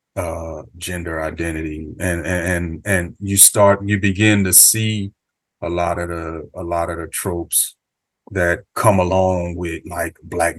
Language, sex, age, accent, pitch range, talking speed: English, male, 30-49, American, 85-100 Hz, 155 wpm